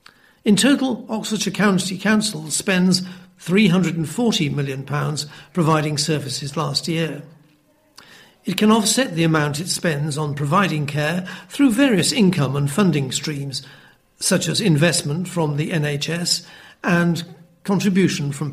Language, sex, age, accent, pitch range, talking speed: English, male, 60-79, British, 155-195 Hz, 120 wpm